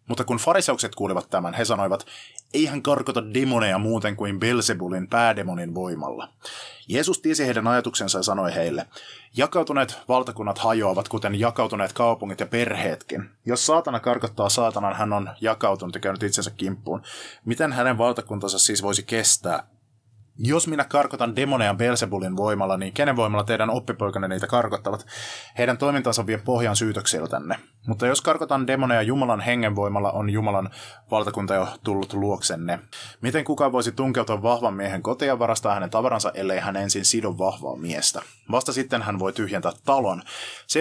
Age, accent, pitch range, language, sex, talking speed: 30-49, native, 100-125 Hz, Finnish, male, 150 wpm